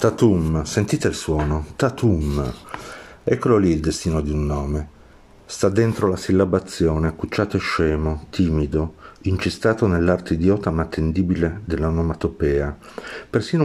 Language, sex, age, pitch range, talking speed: Italian, male, 50-69, 75-105 Hz, 120 wpm